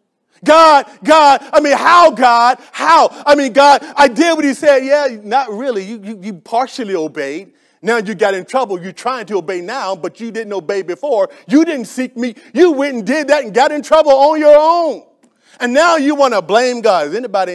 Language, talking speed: English, 215 wpm